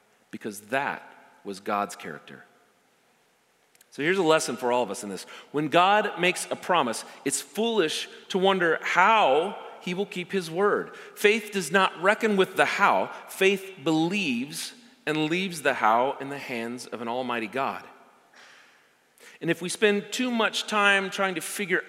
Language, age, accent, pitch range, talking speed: English, 40-59, American, 135-195 Hz, 165 wpm